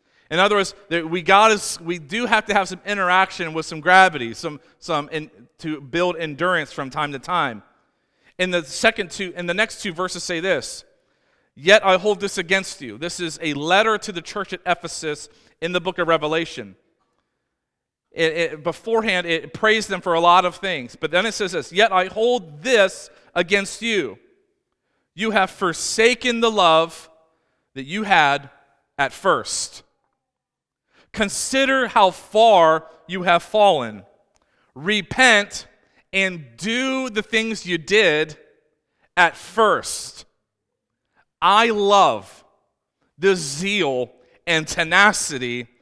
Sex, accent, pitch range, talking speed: male, American, 165-220 Hz, 145 wpm